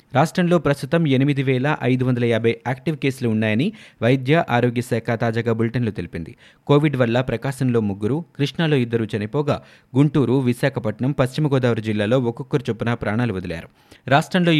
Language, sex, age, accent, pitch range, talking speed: Telugu, male, 30-49, native, 120-145 Hz, 135 wpm